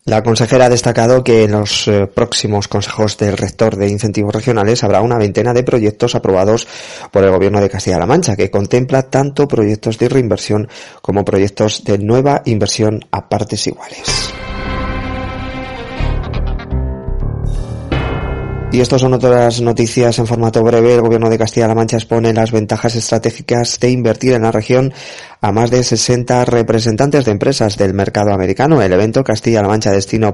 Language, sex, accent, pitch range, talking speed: Spanish, male, Spanish, 105-120 Hz, 150 wpm